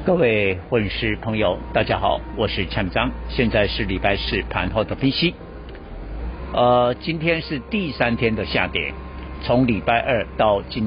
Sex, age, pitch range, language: male, 60-79, 100-150 Hz, Chinese